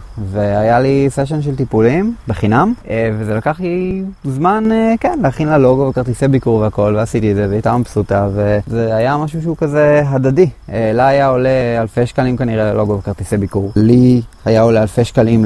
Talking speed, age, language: 165 wpm, 20-39, Hebrew